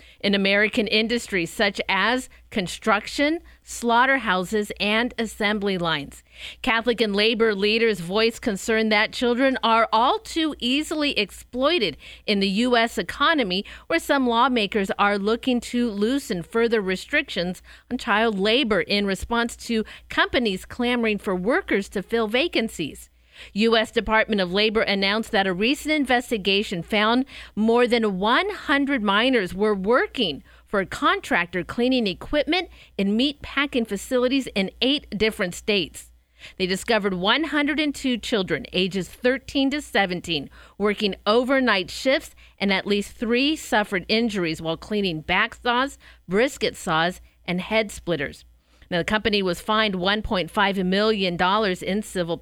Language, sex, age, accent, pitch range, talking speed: English, female, 50-69, American, 195-245 Hz, 130 wpm